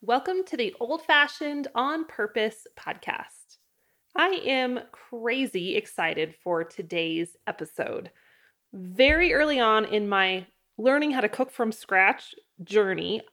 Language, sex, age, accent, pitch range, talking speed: English, female, 20-39, American, 210-295 Hz, 120 wpm